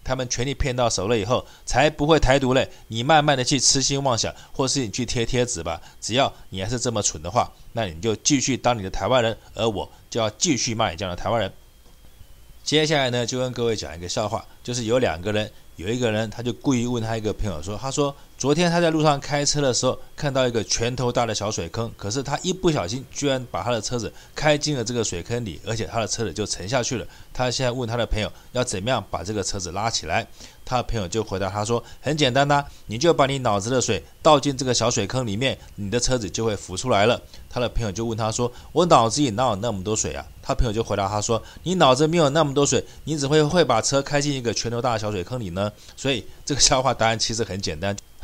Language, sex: Chinese, male